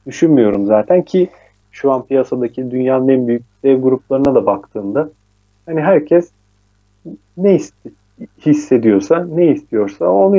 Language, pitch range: Turkish, 120-150 Hz